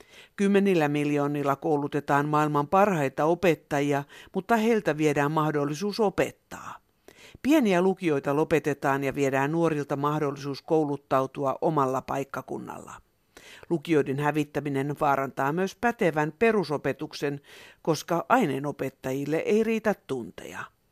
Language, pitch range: Finnish, 140-180 Hz